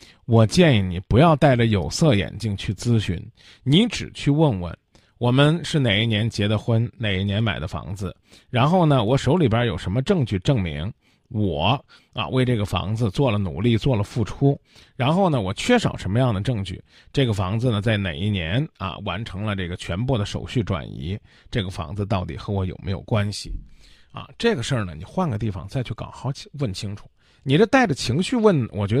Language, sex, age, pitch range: Chinese, male, 20-39, 100-155 Hz